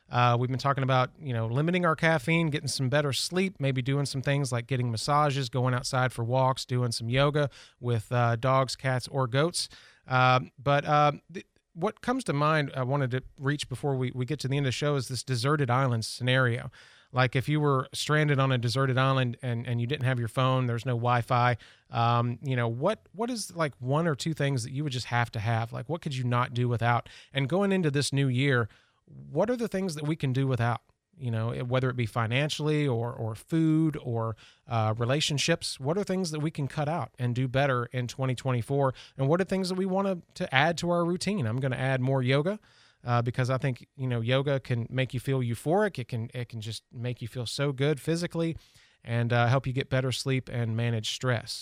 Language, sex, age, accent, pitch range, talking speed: English, male, 30-49, American, 125-150 Hz, 230 wpm